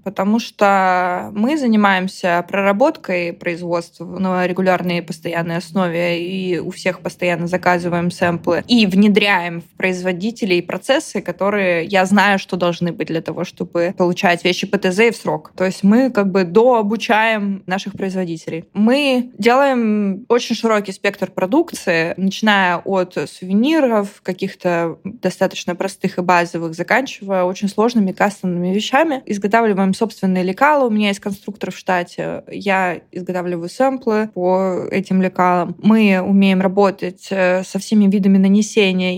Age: 20-39